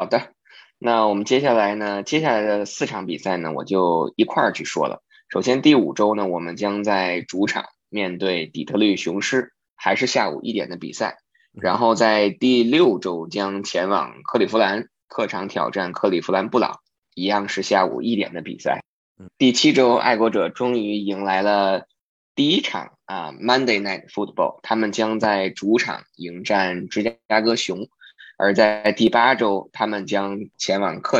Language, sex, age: Chinese, male, 20-39